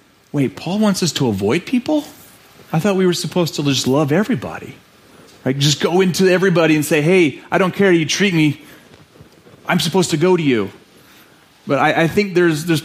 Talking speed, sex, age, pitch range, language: 200 wpm, male, 30-49, 135-175 Hz, English